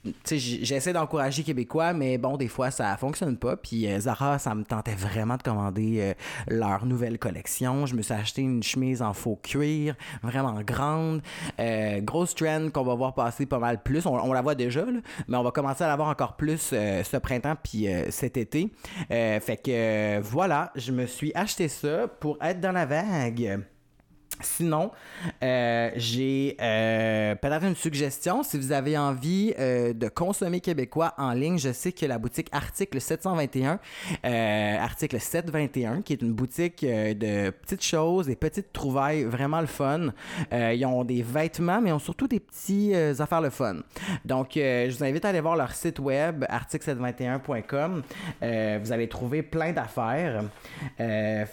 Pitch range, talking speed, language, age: 115-155 Hz, 185 wpm, French, 30-49